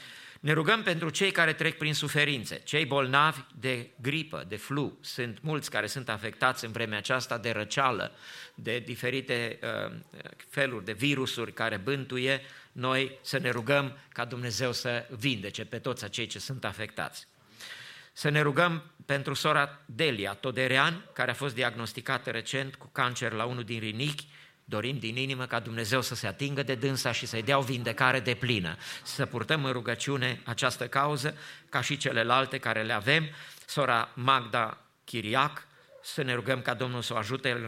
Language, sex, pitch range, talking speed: English, male, 115-140 Hz, 165 wpm